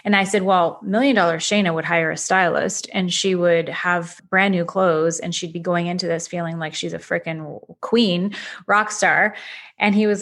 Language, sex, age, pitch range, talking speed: English, female, 30-49, 170-205 Hz, 205 wpm